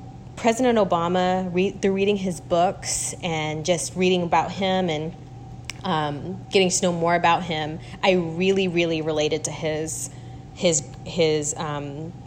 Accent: American